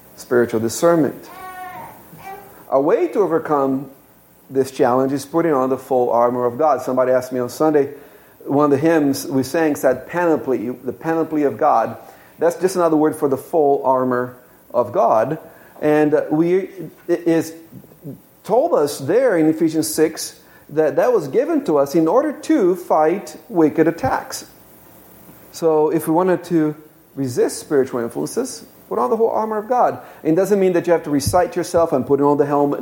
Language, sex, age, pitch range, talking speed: English, male, 40-59, 140-180 Hz, 175 wpm